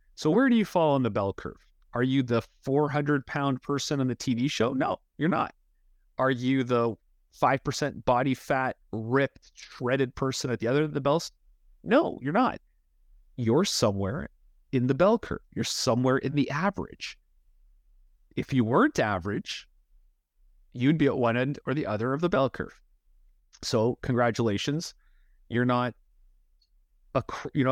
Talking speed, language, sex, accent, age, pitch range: 160 wpm, English, male, American, 30-49, 105-135 Hz